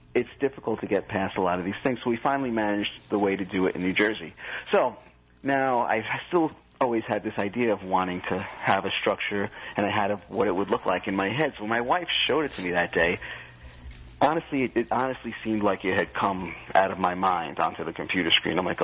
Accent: American